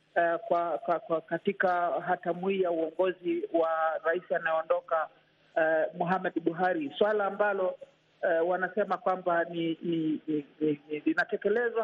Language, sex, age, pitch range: Swahili, male, 50-69, 170-210 Hz